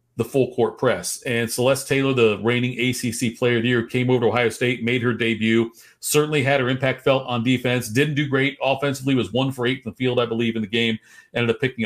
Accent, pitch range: American, 110-135 Hz